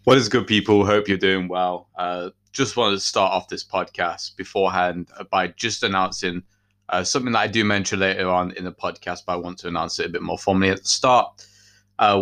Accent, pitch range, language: British, 95-105 Hz, English